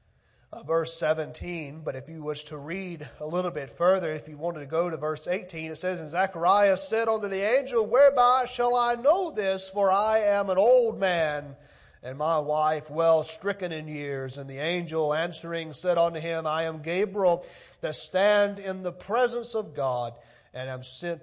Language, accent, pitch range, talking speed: English, American, 145-185 Hz, 190 wpm